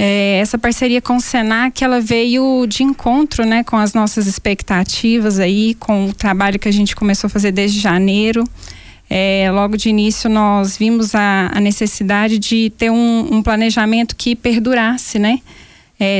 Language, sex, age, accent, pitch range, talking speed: Portuguese, female, 10-29, Brazilian, 200-230 Hz, 165 wpm